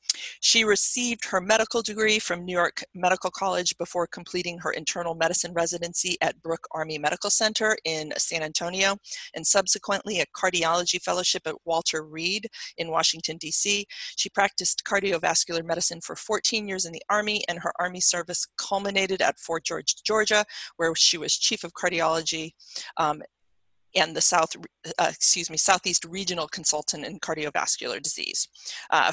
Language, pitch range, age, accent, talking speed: English, 165-195 Hz, 40-59, American, 150 wpm